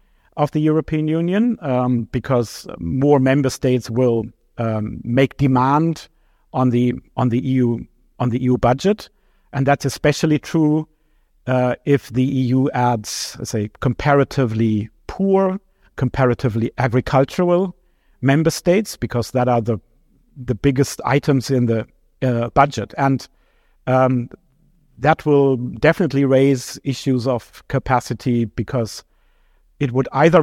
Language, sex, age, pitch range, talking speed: English, male, 50-69, 120-145 Hz, 125 wpm